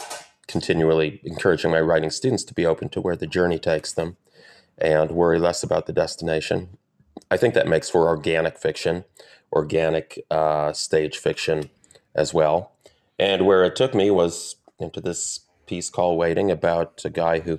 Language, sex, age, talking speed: English, male, 30-49, 165 wpm